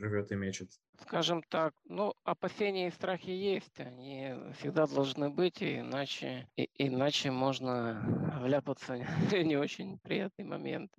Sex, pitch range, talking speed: male, 130-155 Hz, 115 wpm